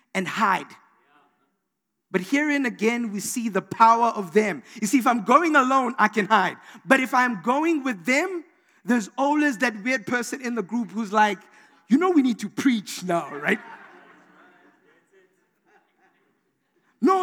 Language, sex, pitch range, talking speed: English, male, 205-275 Hz, 160 wpm